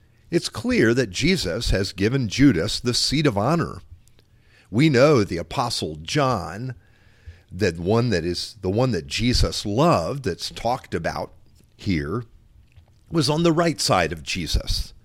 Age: 50-69